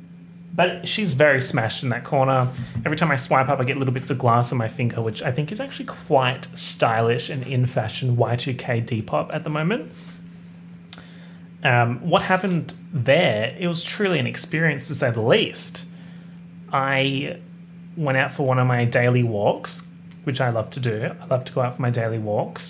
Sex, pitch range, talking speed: male, 130-175 Hz, 190 wpm